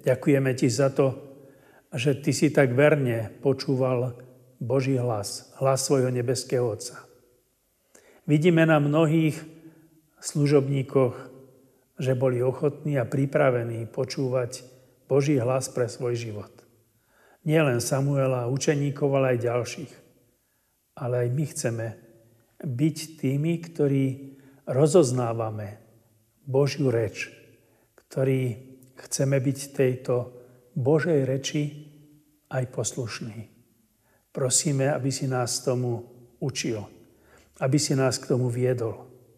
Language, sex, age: Slovak, male, 40-59